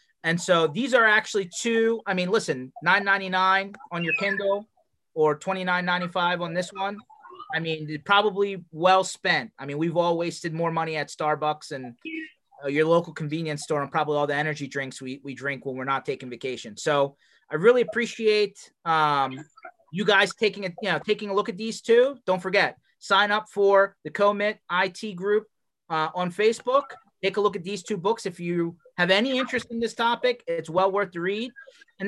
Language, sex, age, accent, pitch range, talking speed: English, male, 30-49, American, 170-220 Hz, 190 wpm